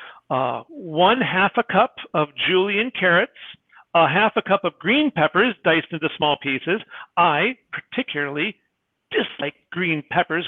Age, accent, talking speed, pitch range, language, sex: 50-69, American, 135 wpm, 155-195 Hz, English, male